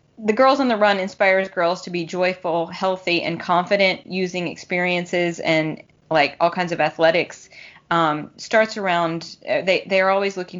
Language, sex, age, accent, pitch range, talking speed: English, female, 20-39, American, 155-185 Hz, 165 wpm